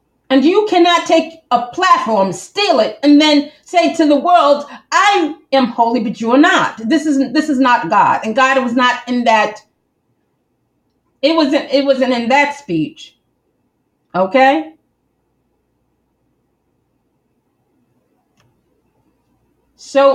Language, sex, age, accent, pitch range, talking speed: English, female, 30-49, American, 255-315 Hz, 125 wpm